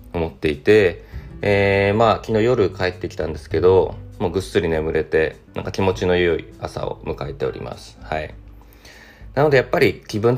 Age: 20-39